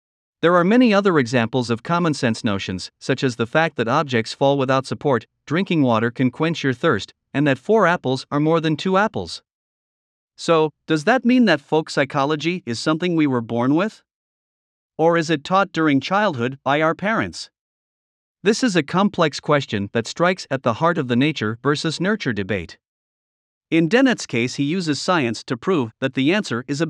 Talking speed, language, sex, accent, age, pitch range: 185 wpm, English, male, American, 50-69, 130-175 Hz